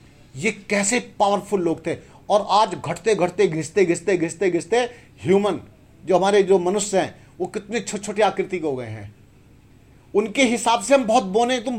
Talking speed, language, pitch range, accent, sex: 165 wpm, Hindi, 150-215 Hz, native, male